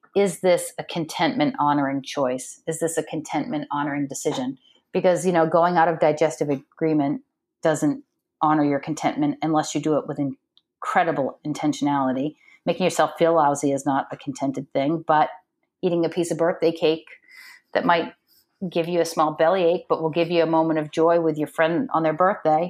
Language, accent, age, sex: English, American, 40-59, female